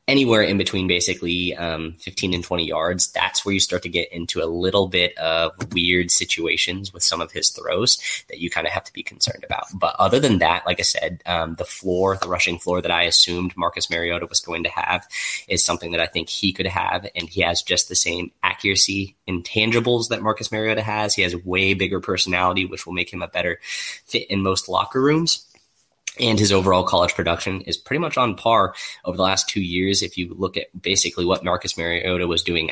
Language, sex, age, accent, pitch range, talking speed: English, male, 10-29, American, 85-100 Hz, 220 wpm